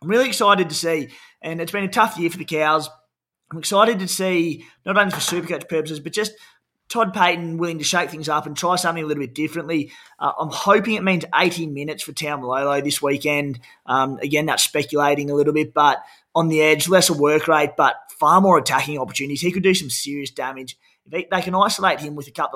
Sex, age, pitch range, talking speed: male, 20-39, 145-170 Hz, 225 wpm